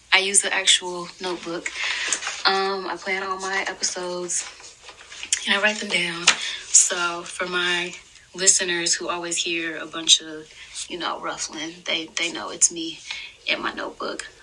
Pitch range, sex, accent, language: 165-190 Hz, female, American, English